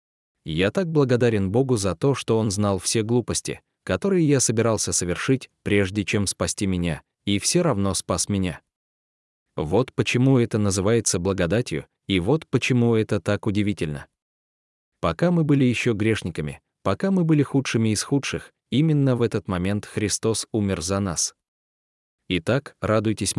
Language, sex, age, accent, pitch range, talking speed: Russian, male, 20-39, native, 95-125 Hz, 145 wpm